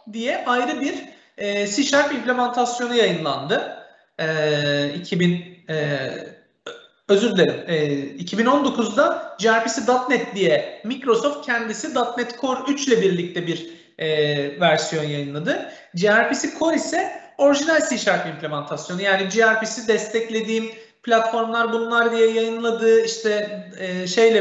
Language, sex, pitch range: Turkish, male, 170-240 Hz